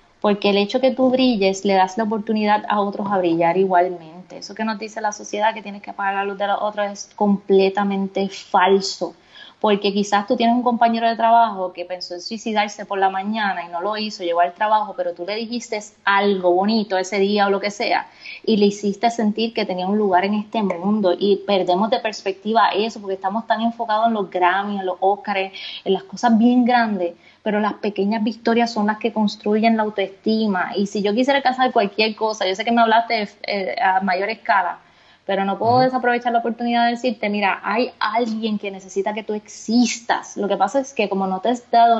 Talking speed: 215 wpm